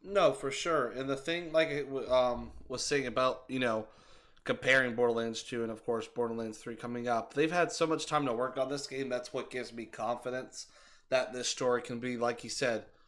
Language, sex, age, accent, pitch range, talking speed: English, male, 20-39, American, 120-140 Hz, 210 wpm